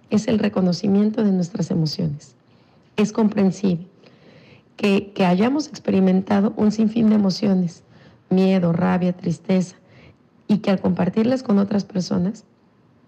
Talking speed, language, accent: 120 wpm, Spanish, Mexican